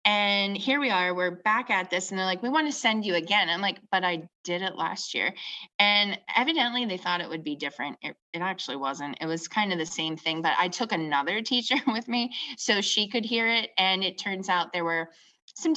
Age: 20-39